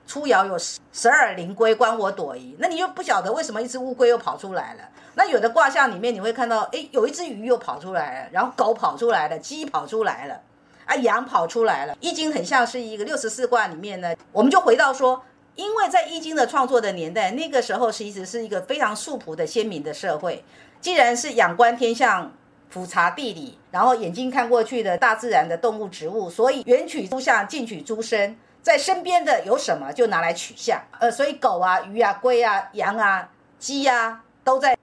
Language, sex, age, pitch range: Chinese, female, 50-69, 220-275 Hz